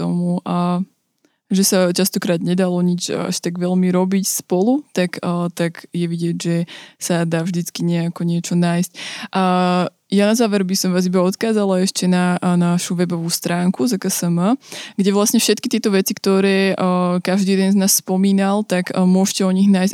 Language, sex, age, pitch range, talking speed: Slovak, female, 20-39, 175-195 Hz, 165 wpm